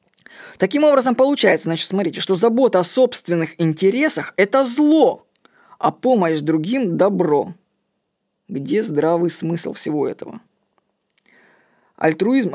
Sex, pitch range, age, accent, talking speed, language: female, 165-210 Hz, 20-39, native, 105 wpm, Russian